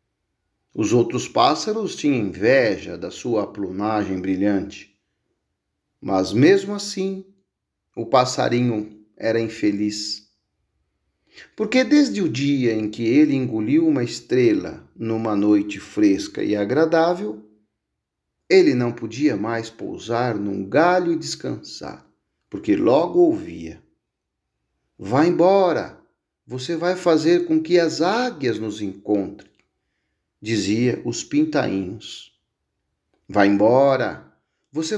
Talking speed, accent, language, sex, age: 105 wpm, Brazilian, Portuguese, male, 50-69